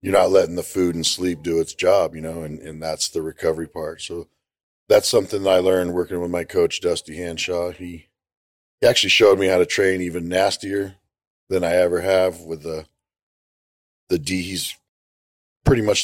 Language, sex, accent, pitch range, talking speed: English, male, American, 80-90 Hz, 190 wpm